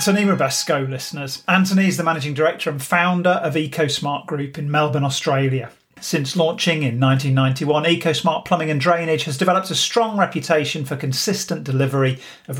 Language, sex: English, male